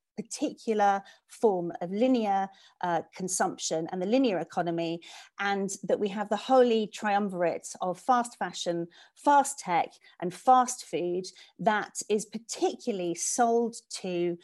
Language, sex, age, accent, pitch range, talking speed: English, female, 40-59, British, 175-230 Hz, 125 wpm